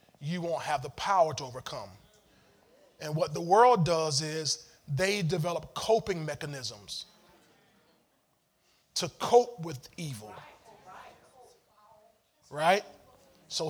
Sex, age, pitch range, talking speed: male, 20-39, 140-170 Hz, 100 wpm